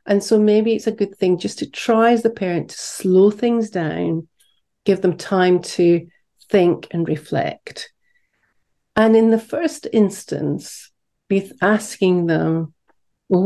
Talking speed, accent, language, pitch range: 145 wpm, British, English, 175-225 Hz